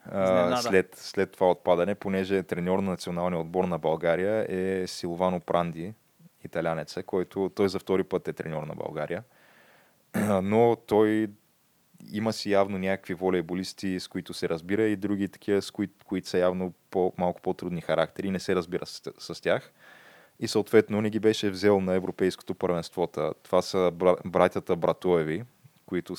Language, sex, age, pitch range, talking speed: Bulgarian, male, 20-39, 90-100 Hz, 160 wpm